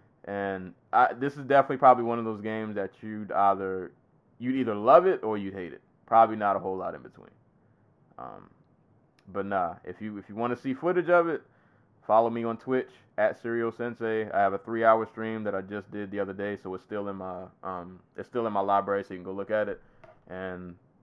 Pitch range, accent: 95-120 Hz, American